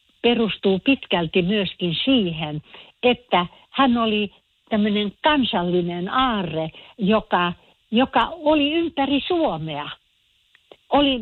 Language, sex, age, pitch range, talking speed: Finnish, female, 60-79, 175-230 Hz, 85 wpm